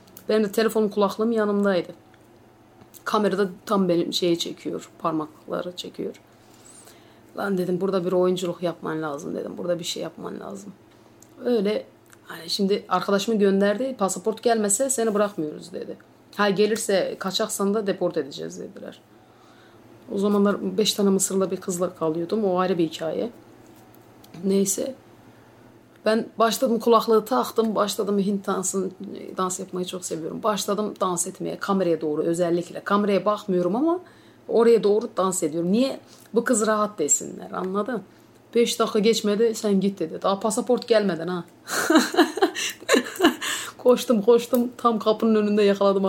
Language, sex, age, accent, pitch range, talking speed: Turkish, female, 30-49, native, 185-225 Hz, 130 wpm